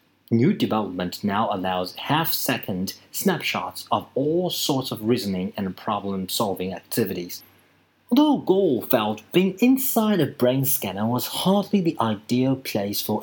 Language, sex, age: Chinese, male, 30-49